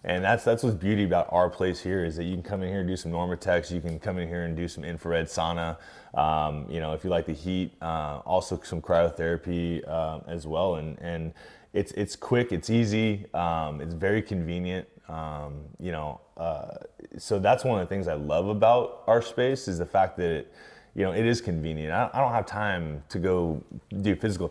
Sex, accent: male, American